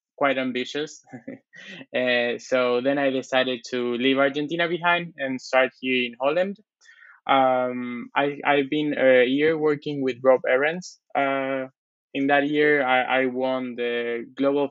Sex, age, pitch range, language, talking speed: male, 20-39, 125-140 Hz, English, 135 wpm